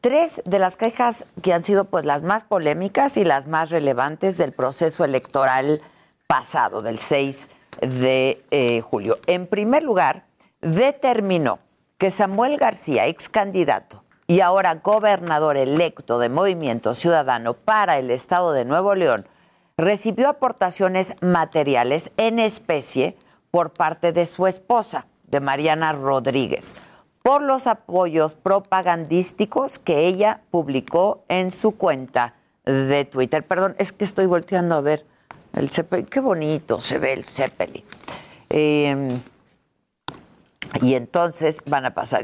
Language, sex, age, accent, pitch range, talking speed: Spanish, female, 50-69, Mexican, 145-195 Hz, 130 wpm